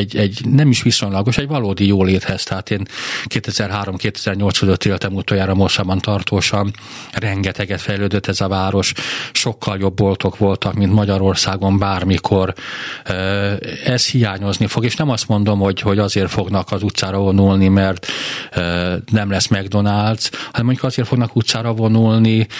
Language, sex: Hungarian, male